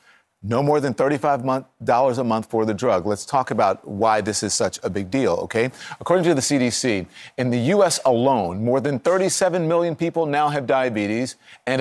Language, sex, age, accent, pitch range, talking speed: English, male, 40-59, American, 100-135 Hz, 190 wpm